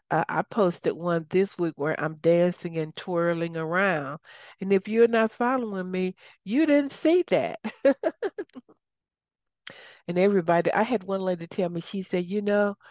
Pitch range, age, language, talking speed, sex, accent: 165-200 Hz, 60-79, English, 160 wpm, female, American